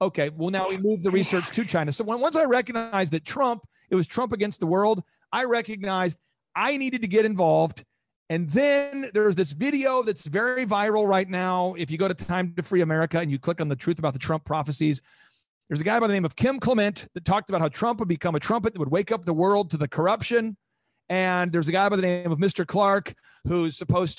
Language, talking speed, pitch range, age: English, 240 wpm, 160-220 Hz, 40-59